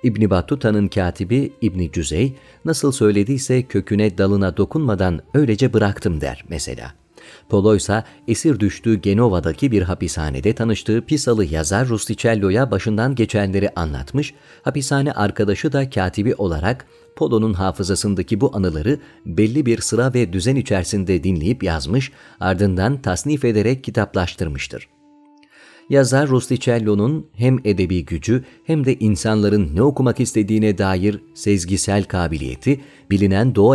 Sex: male